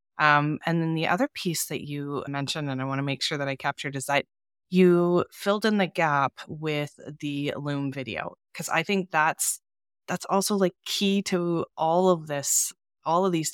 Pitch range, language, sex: 140-180 Hz, English, female